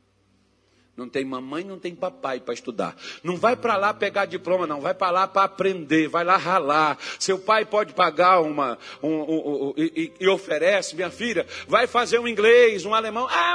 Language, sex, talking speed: Portuguese, male, 190 wpm